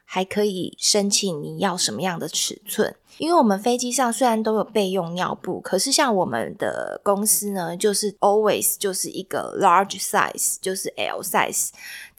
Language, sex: Chinese, female